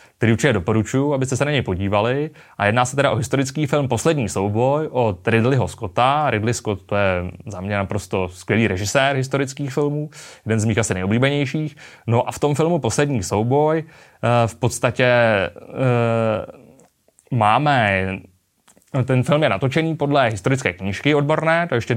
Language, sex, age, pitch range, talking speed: Czech, male, 20-39, 105-140 Hz, 155 wpm